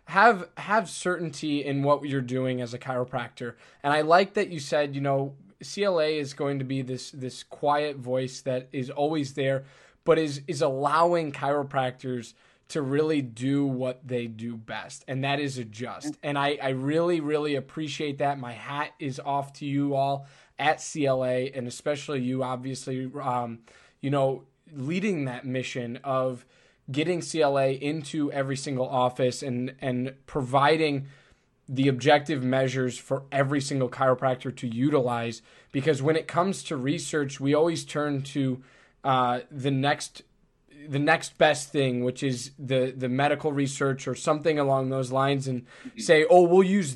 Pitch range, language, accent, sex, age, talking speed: 130-155 Hz, English, American, male, 20-39, 160 wpm